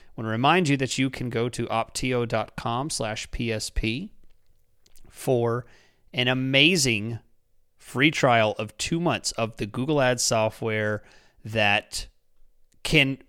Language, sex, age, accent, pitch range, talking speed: English, male, 30-49, American, 110-135 Hz, 125 wpm